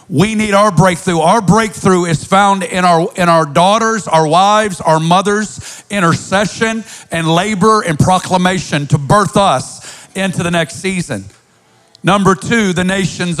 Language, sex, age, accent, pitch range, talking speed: English, male, 50-69, American, 165-205 Hz, 150 wpm